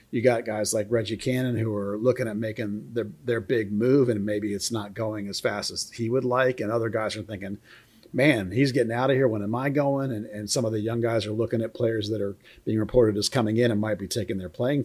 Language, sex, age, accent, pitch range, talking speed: English, male, 40-59, American, 110-130 Hz, 265 wpm